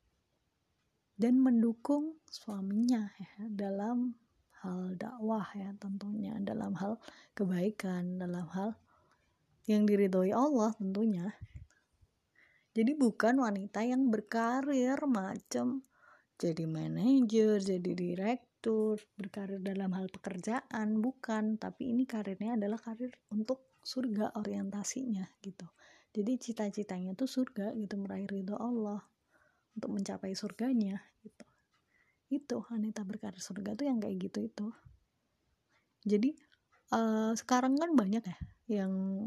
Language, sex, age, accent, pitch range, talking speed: Indonesian, female, 20-39, native, 195-240 Hz, 105 wpm